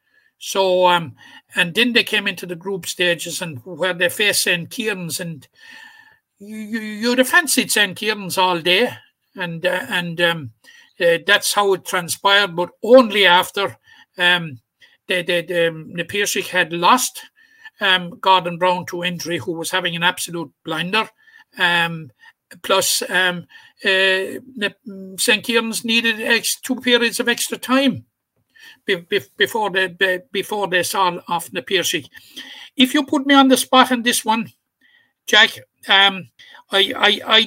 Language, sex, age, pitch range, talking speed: English, male, 60-79, 180-245 Hz, 150 wpm